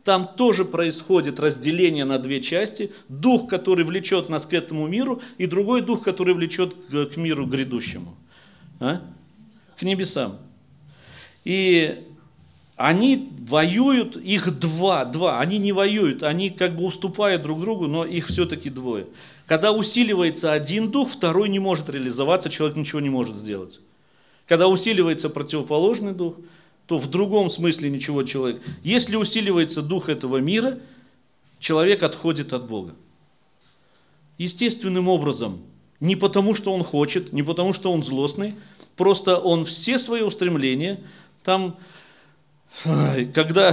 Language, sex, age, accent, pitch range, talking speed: Russian, male, 40-59, native, 150-195 Hz, 130 wpm